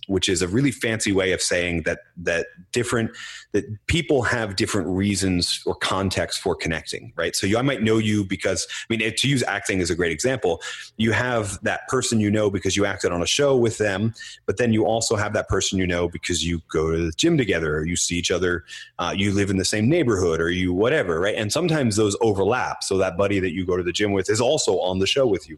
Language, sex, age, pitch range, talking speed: English, male, 30-49, 90-115 Hz, 245 wpm